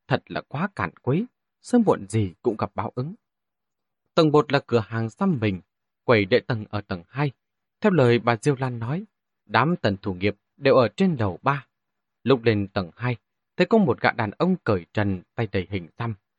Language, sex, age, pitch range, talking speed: Vietnamese, male, 20-39, 105-150 Hz, 205 wpm